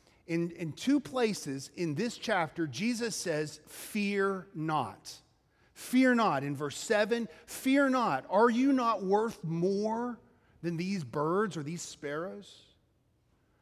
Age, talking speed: 40-59, 140 wpm